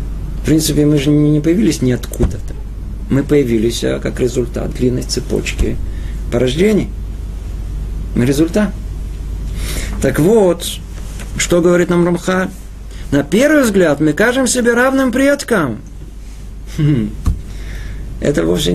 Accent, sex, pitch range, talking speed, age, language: native, male, 115-180 Hz, 100 wpm, 50-69, Russian